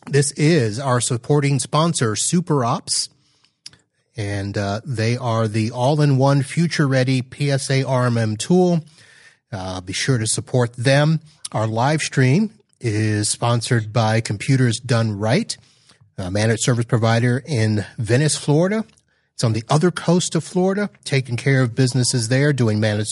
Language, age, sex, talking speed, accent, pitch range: English, 30-49, male, 140 wpm, American, 115-145 Hz